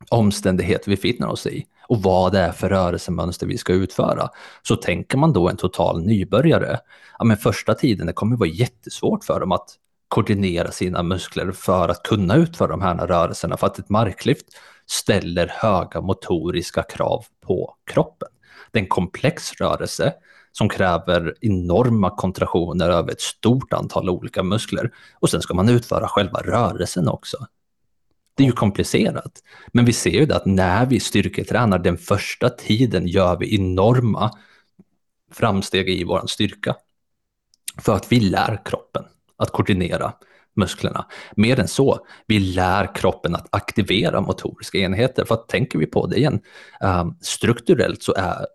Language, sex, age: Swedish, male, 30-49